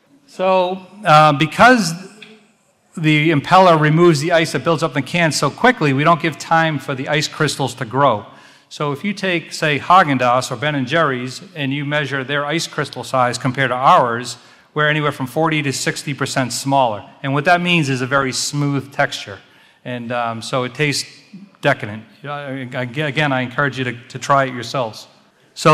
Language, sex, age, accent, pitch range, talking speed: English, male, 40-59, American, 130-155 Hz, 185 wpm